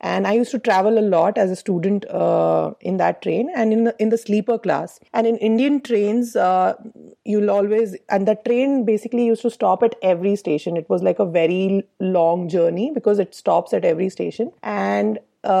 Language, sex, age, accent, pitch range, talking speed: English, female, 30-49, Indian, 185-220 Hz, 200 wpm